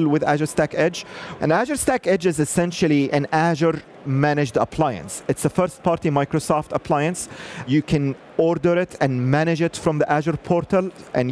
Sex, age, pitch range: male, 30-49, 140-165 Hz